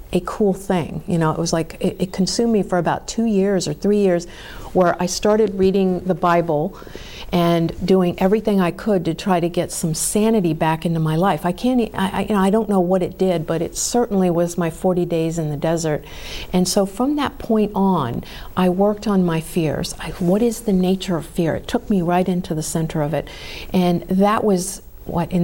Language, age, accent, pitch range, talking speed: English, 50-69, American, 165-195 Hz, 215 wpm